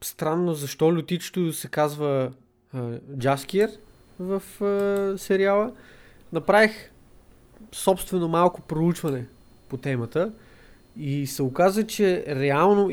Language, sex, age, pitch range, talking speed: Bulgarian, male, 20-39, 135-175 Hz, 100 wpm